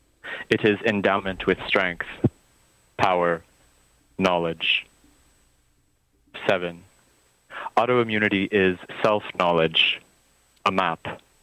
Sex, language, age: male, English, 30-49